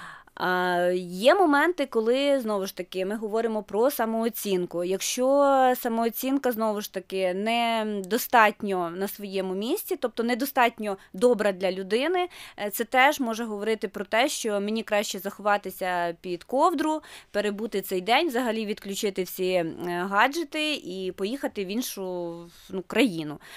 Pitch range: 195-250 Hz